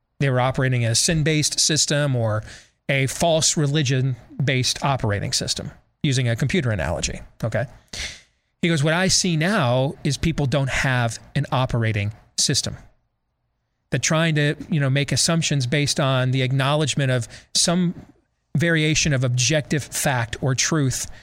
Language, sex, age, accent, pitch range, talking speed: English, male, 40-59, American, 125-165 Hz, 140 wpm